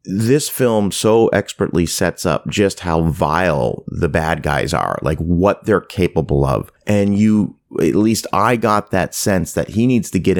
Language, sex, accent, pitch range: English, male, American, 80-105 Hz